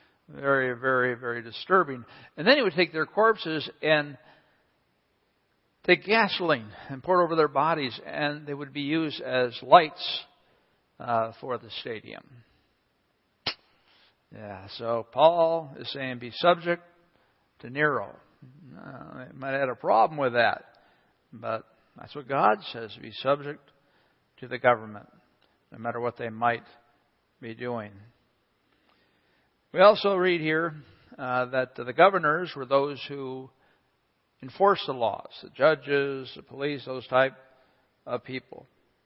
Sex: male